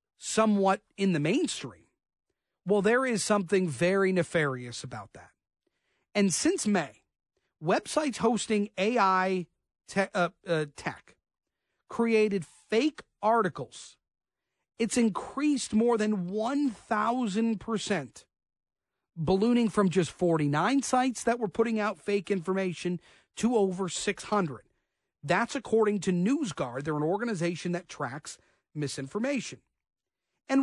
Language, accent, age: English, American, 40-59